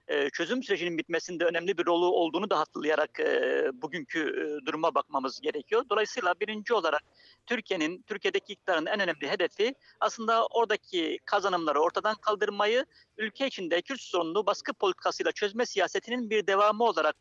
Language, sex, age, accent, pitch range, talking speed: German, male, 50-69, Turkish, 170-255 Hz, 140 wpm